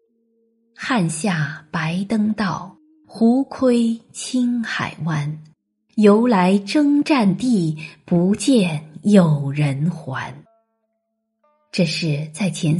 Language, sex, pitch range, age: Chinese, female, 160-230 Hz, 20-39